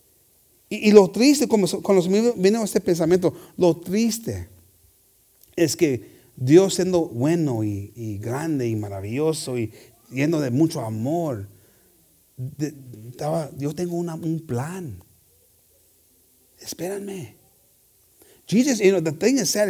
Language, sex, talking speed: English, male, 130 wpm